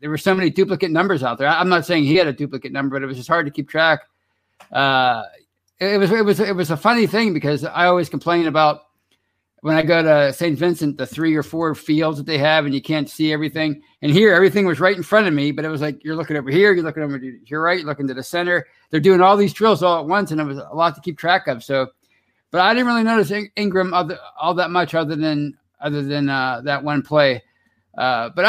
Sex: male